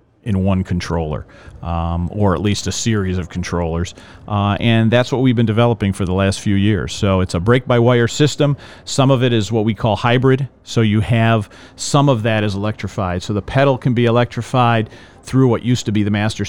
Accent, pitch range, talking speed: American, 105-125 Hz, 215 wpm